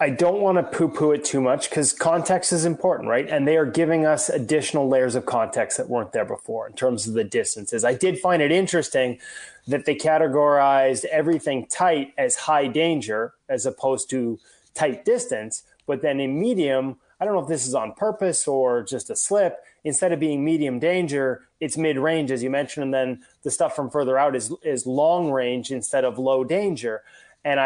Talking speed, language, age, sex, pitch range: 195 wpm, English, 20-39, male, 130-165 Hz